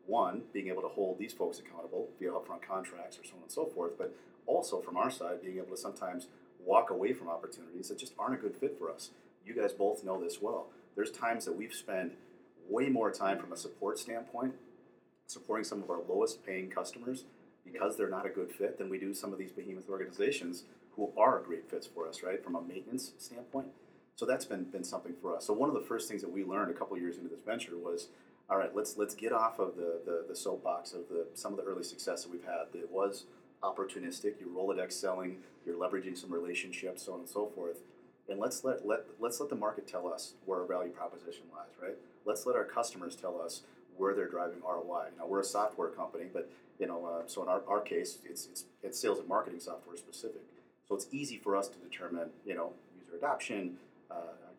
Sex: male